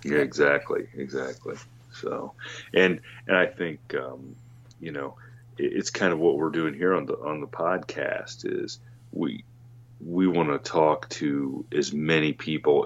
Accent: American